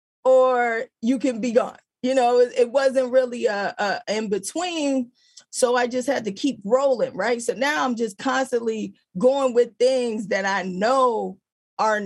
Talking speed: 160 wpm